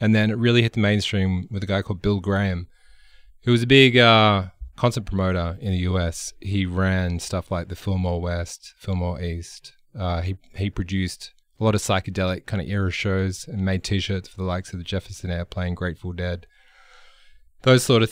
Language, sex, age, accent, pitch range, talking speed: English, male, 20-39, Australian, 90-105 Hz, 195 wpm